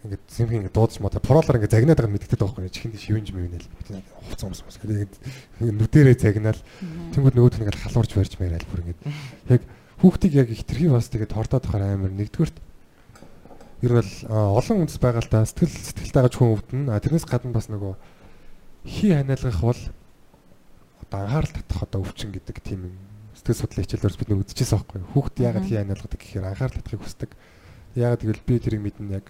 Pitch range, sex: 100-125 Hz, male